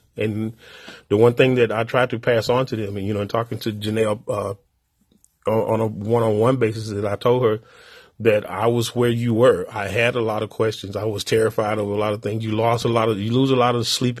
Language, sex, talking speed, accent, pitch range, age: English, male, 255 wpm, American, 110-125 Hz, 30-49